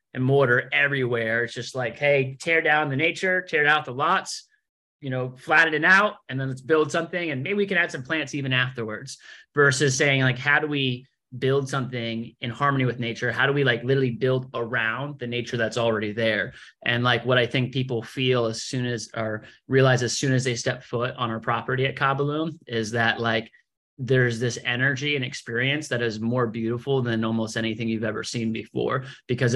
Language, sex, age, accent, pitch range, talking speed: English, male, 30-49, American, 120-145 Hz, 210 wpm